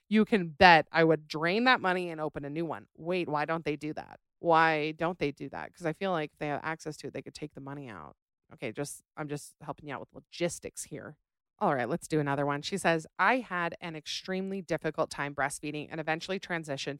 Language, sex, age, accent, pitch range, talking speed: English, female, 30-49, American, 150-190 Hz, 235 wpm